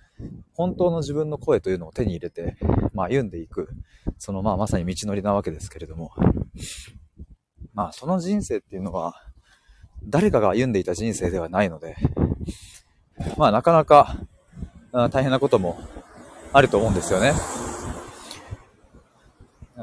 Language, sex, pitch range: Japanese, male, 90-135 Hz